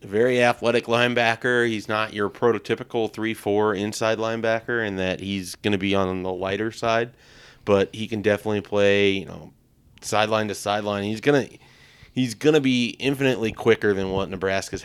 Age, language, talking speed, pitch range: 30-49, English, 160 wpm, 95-115 Hz